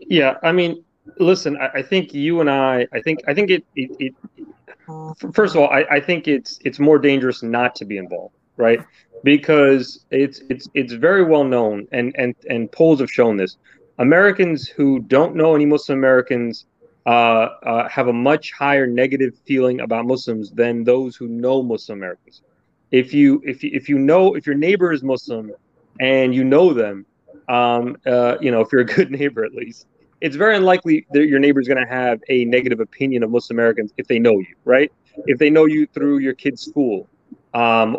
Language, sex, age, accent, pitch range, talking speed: English, male, 30-49, American, 120-155 Hz, 195 wpm